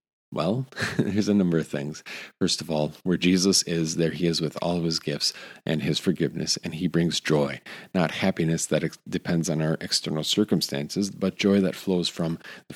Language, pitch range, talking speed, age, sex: English, 75-90 Hz, 200 wpm, 50-69, male